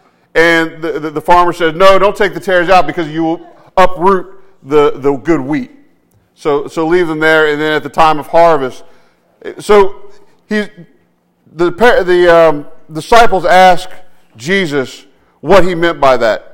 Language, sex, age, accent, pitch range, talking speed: English, male, 50-69, American, 160-200 Hz, 165 wpm